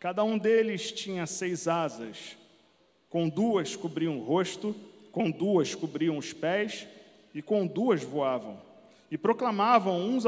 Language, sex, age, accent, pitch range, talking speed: Portuguese, male, 40-59, Brazilian, 180-230 Hz, 135 wpm